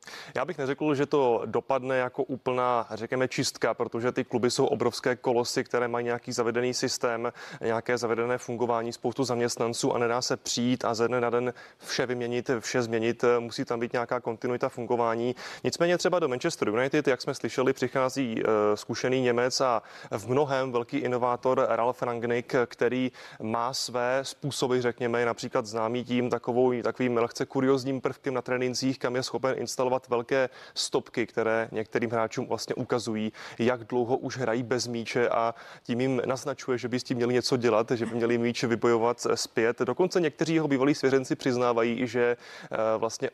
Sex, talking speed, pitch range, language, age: male, 165 wpm, 120-135 Hz, Czech, 20-39